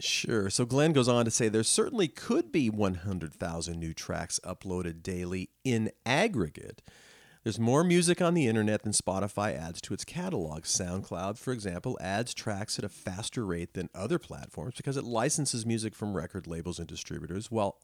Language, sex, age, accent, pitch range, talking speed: English, male, 40-59, American, 90-125 Hz, 175 wpm